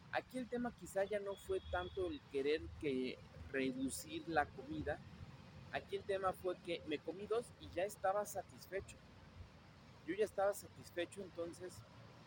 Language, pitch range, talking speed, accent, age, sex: Spanish, 120-195 Hz, 150 wpm, Mexican, 40-59, male